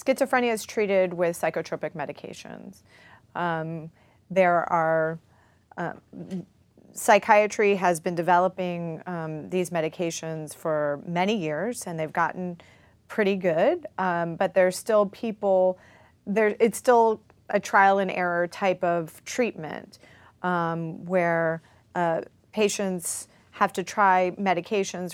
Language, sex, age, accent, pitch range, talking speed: English, female, 30-49, American, 160-190 Hz, 115 wpm